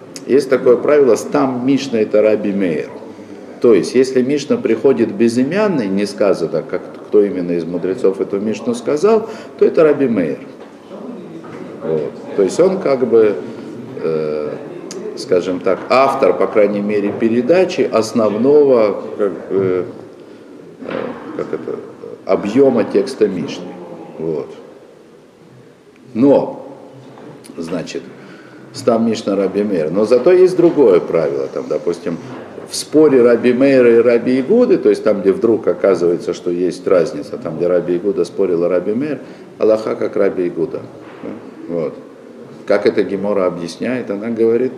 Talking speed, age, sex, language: 125 wpm, 50-69, male, Russian